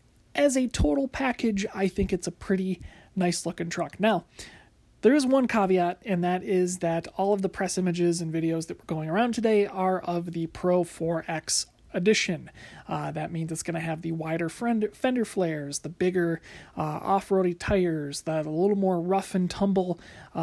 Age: 30-49